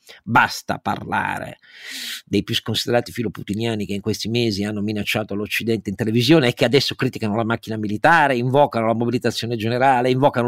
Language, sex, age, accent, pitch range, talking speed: Italian, male, 50-69, native, 110-140 Hz, 155 wpm